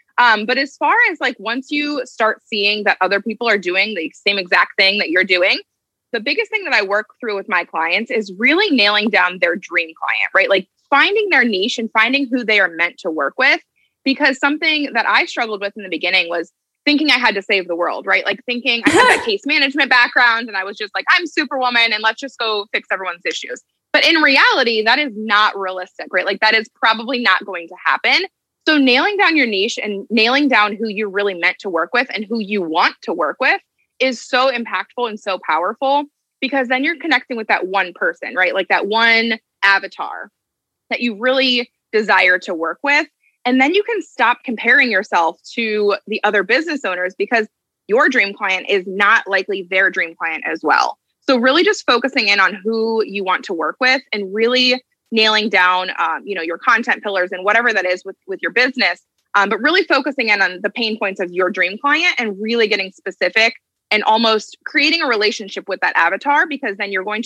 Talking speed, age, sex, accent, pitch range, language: 215 wpm, 20-39, female, American, 195-265 Hz, English